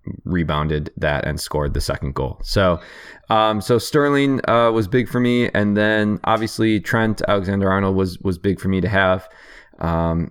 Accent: American